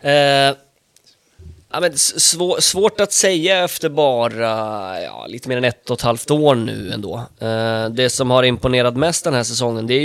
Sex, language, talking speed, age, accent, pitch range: male, Swedish, 150 wpm, 20-39, native, 115-135 Hz